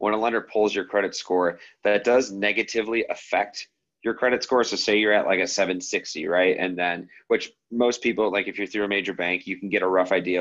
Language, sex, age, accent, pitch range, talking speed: English, male, 30-49, American, 95-115 Hz, 230 wpm